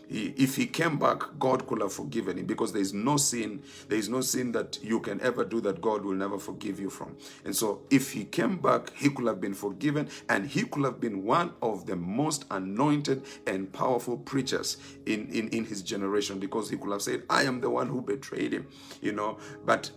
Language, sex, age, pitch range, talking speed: English, male, 50-69, 105-140 Hz, 215 wpm